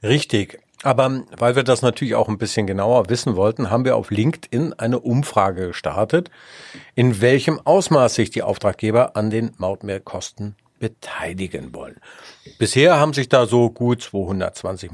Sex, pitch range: male, 110-135 Hz